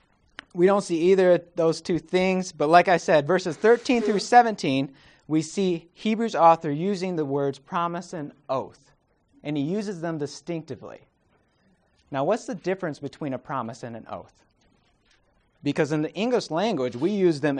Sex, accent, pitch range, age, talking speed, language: male, American, 140-185 Hz, 30-49, 165 wpm, English